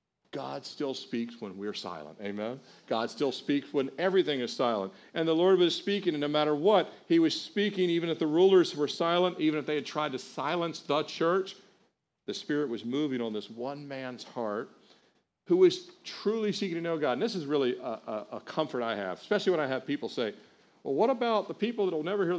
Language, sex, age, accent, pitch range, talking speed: English, male, 50-69, American, 115-185 Hz, 220 wpm